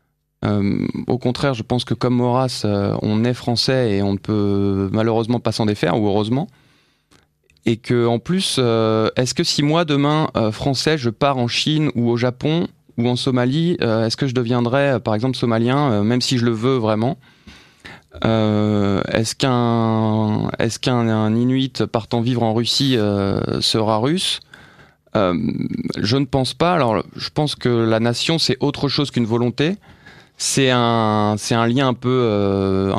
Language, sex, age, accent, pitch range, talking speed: French, male, 20-39, French, 110-135 Hz, 180 wpm